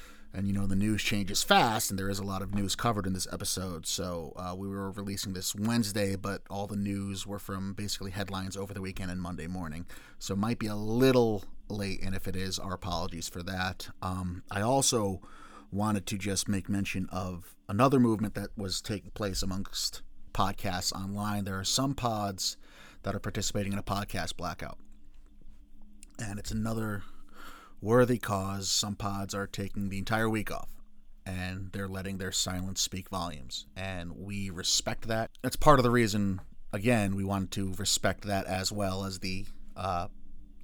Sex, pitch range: male, 90-100 Hz